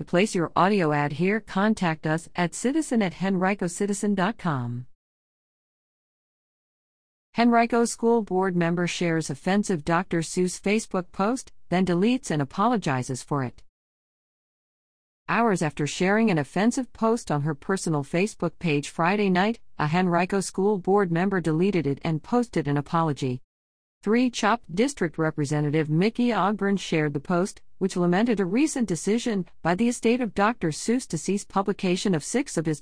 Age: 50-69